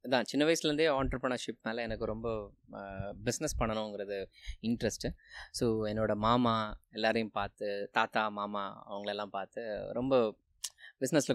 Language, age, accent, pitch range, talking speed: Tamil, 20-39, native, 105-130 Hz, 105 wpm